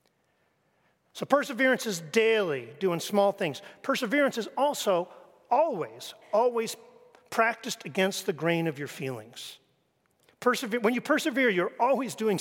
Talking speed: 120 wpm